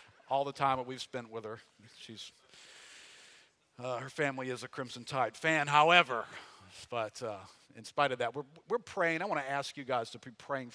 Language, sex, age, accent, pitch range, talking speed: English, male, 50-69, American, 105-135 Hz, 200 wpm